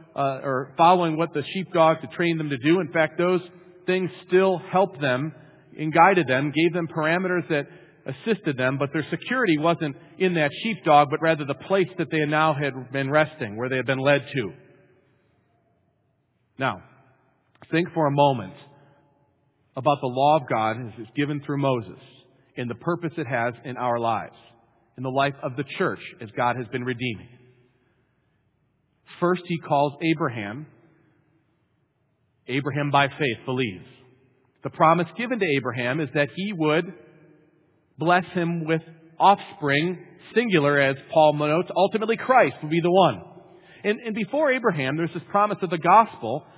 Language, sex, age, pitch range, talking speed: English, male, 40-59, 135-175 Hz, 160 wpm